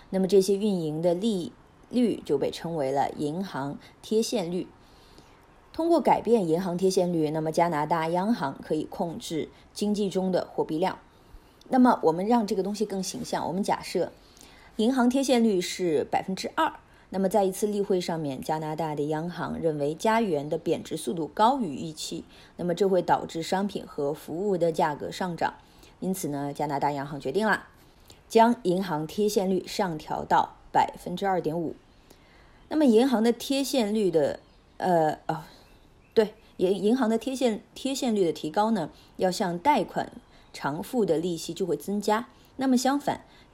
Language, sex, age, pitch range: Chinese, female, 20-39, 170-225 Hz